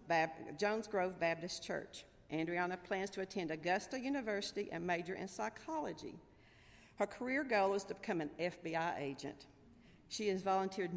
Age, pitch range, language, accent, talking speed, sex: 50-69, 165-210 Hz, English, American, 140 wpm, female